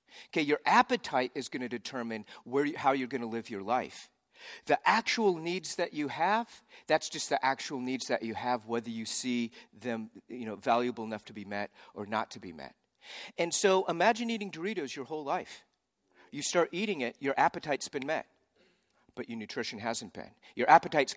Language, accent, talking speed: English, American, 195 wpm